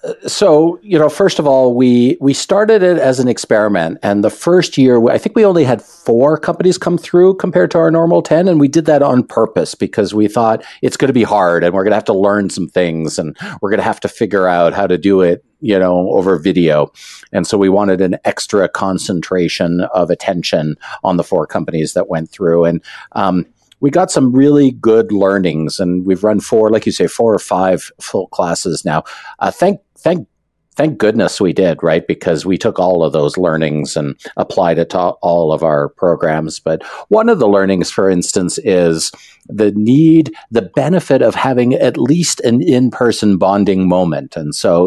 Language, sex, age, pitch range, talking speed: English, male, 50-69, 85-135 Hz, 205 wpm